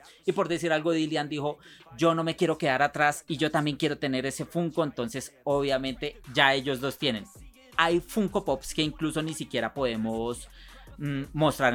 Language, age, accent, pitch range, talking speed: Spanish, 30-49, Colombian, 125-145 Hz, 180 wpm